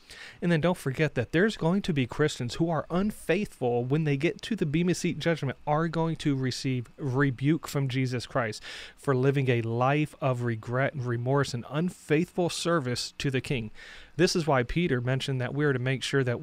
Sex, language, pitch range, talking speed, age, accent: male, English, 125-160 Hz, 200 wpm, 30-49, American